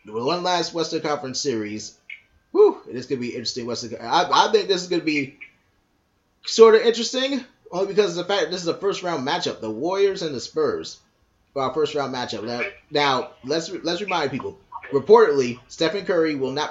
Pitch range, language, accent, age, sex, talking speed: 115-170 Hz, English, American, 30-49, male, 195 wpm